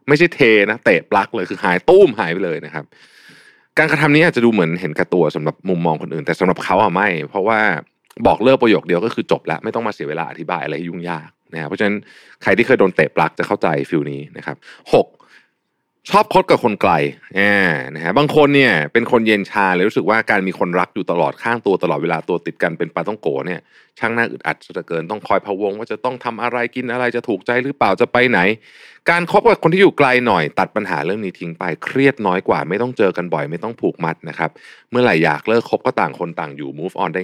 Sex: male